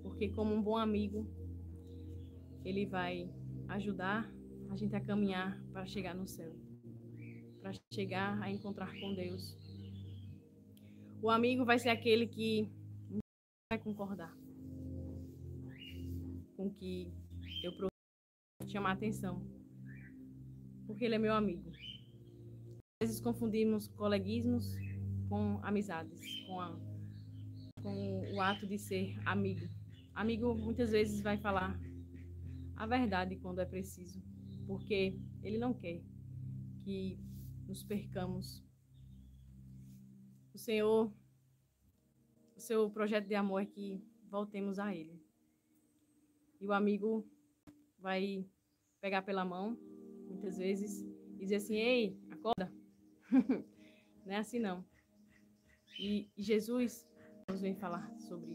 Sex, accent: female, Brazilian